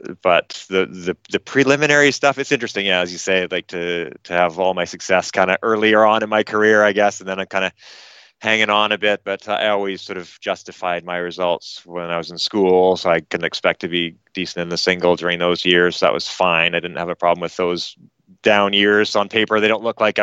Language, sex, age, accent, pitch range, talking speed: English, male, 30-49, American, 90-105 Hz, 245 wpm